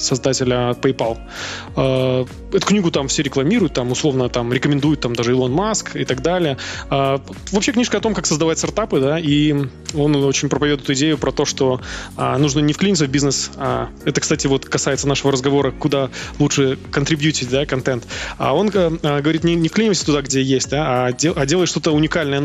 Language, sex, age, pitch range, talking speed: Russian, male, 20-39, 130-150 Hz, 190 wpm